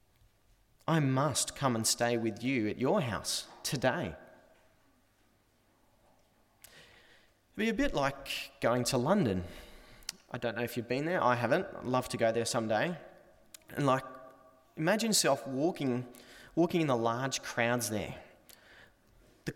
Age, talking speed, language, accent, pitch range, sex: 20-39, 145 wpm, English, Australian, 120-190 Hz, male